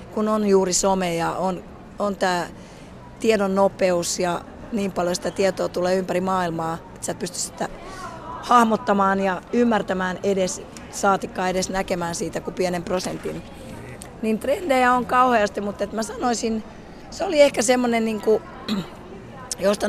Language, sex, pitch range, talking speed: Finnish, female, 185-225 Hz, 145 wpm